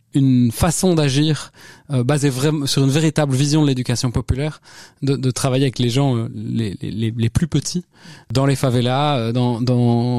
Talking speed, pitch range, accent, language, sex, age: 185 wpm, 120-145 Hz, French, French, male, 20-39